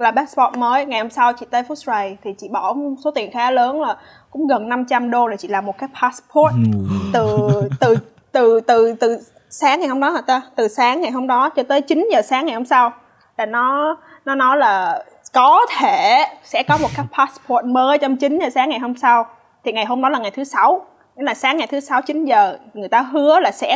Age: 20-39